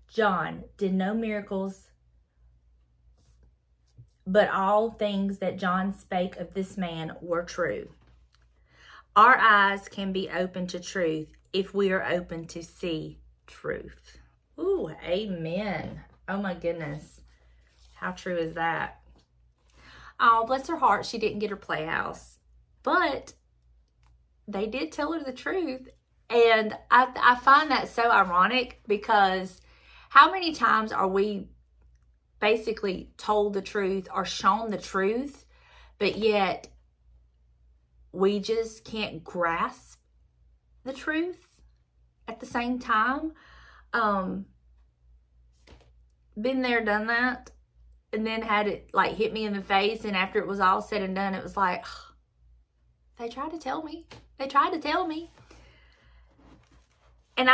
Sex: female